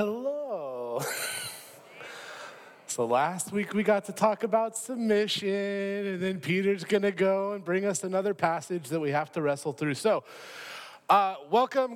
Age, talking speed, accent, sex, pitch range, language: 30-49, 145 wpm, American, male, 160-220 Hz, English